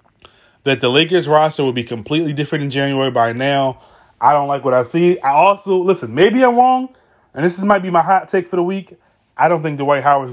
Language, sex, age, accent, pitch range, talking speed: English, male, 30-49, American, 130-180 Hz, 230 wpm